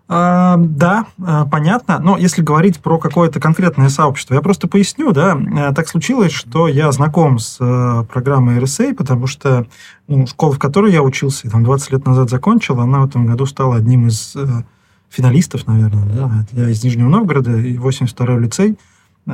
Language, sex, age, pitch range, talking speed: Russian, male, 20-39, 125-160 Hz, 155 wpm